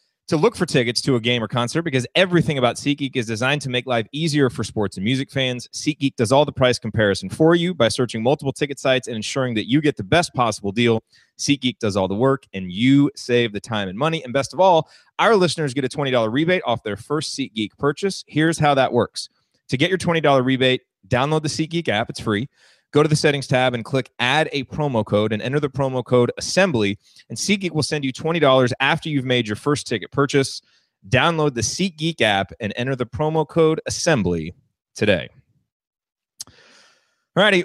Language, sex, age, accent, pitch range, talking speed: English, male, 30-49, American, 120-155 Hz, 205 wpm